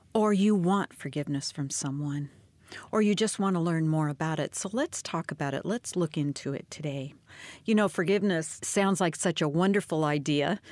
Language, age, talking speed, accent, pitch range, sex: English, 50-69, 190 wpm, American, 150-190 Hz, female